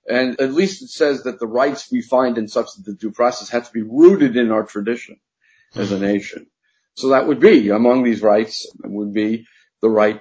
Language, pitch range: English, 105-140 Hz